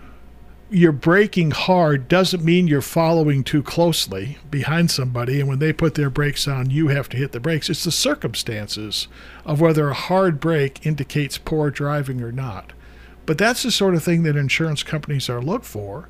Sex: male